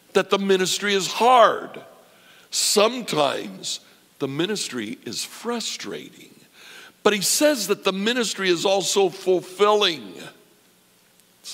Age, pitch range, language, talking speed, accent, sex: 60-79, 130-195 Hz, English, 105 wpm, American, male